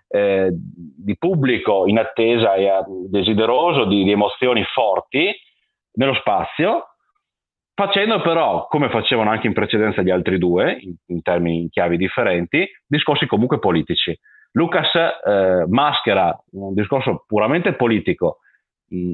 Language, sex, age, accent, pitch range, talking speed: Italian, male, 40-59, native, 95-125 Hz, 120 wpm